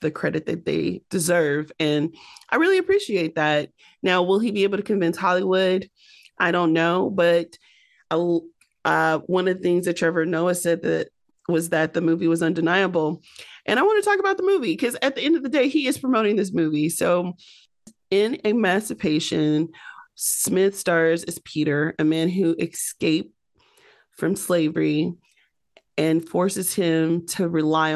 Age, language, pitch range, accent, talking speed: 30-49, English, 160-185 Hz, American, 160 wpm